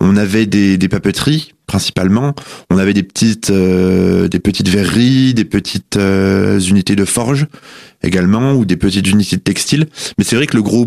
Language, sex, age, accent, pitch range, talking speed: French, male, 20-39, French, 100-120 Hz, 180 wpm